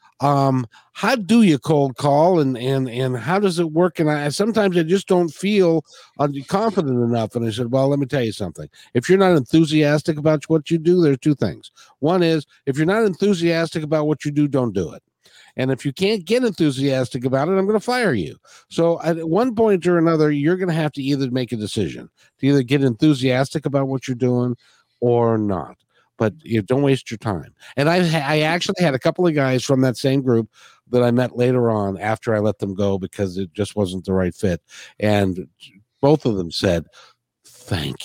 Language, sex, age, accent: English, male, 50-69, American